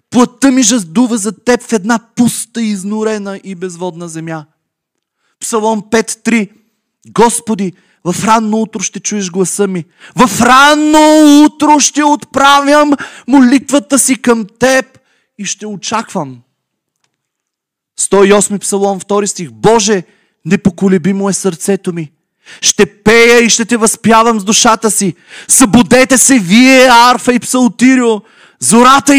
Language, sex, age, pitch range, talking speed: Bulgarian, male, 30-49, 170-230 Hz, 120 wpm